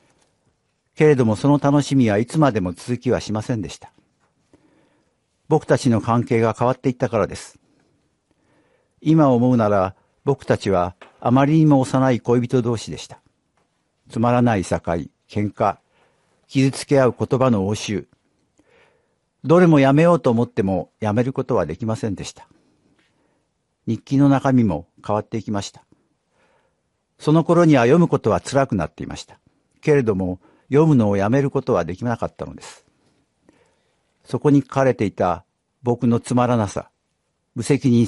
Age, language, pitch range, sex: 50-69, Japanese, 105-135 Hz, male